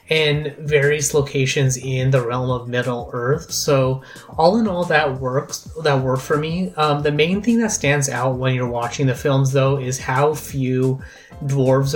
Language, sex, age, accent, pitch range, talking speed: English, male, 30-49, American, 130-150 Hz, 180 wpm